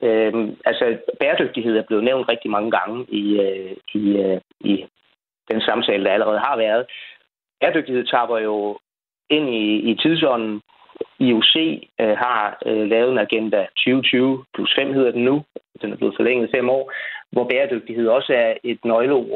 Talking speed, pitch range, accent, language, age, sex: 165 wpm, 110-135 Hz, native, Danish, 40-59, male